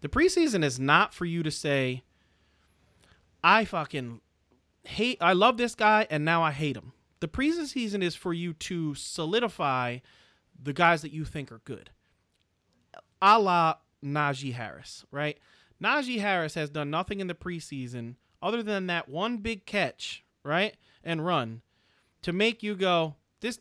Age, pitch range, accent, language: 30-49, 145-205 Hz, American, English